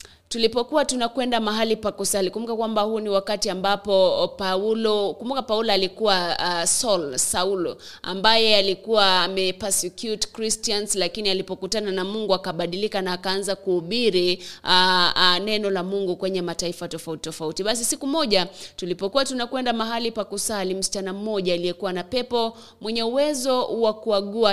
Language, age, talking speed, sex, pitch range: English, 30-49, 130 wpm, female, 185-225 Hz